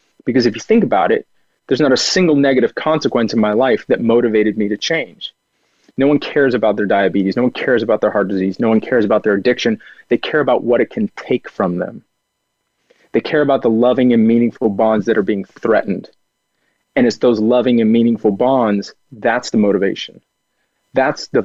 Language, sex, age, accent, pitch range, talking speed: English, male, 30-49, American, 110-135 Hz, 200 wpm